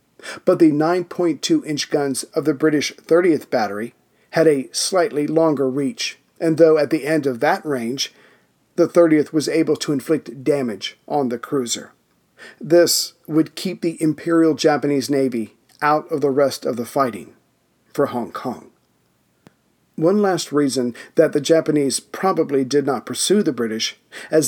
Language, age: English, 40-59